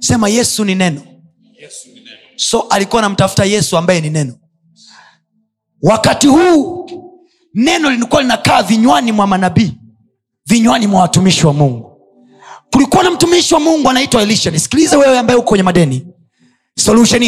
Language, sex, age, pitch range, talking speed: Swahili, male, 30-49, 160-250 Hz, 125 wpm